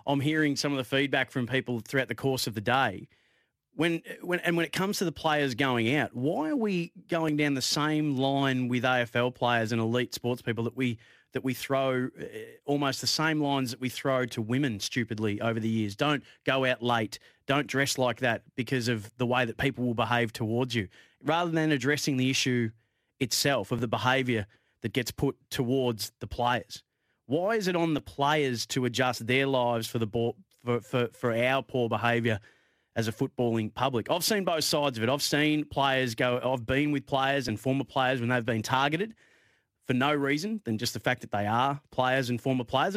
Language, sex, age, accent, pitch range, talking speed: English, male, 30-49, Australian, 120-140 Hz, 210 wpm